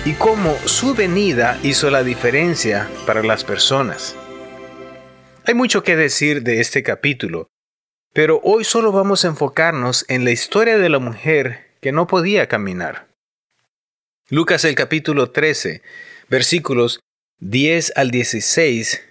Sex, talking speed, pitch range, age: male, 130 wpm, 120-175 Hz, 30-49